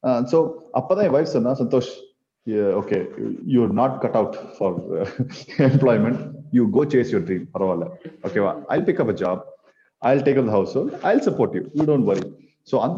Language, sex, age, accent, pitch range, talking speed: Tamil, male, 30-49, native, 125-175 Hz, 210 wpm